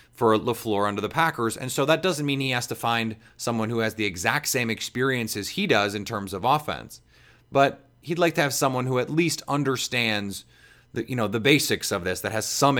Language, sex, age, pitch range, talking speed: English, male, 30-49, 110-135 Hz, 225 wpm